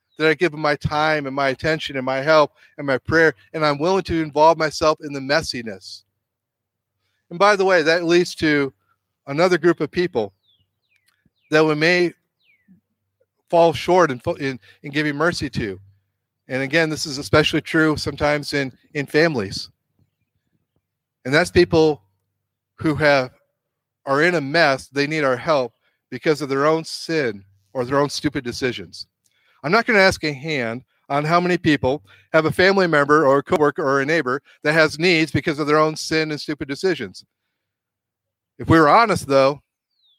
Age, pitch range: 40-59, 135-165 Hz